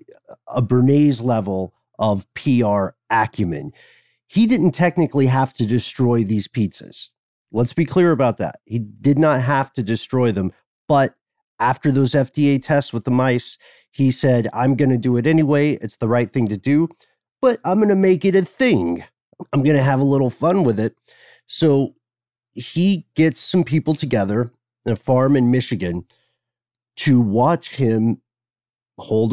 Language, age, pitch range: English, 40-59, 115-150 Hz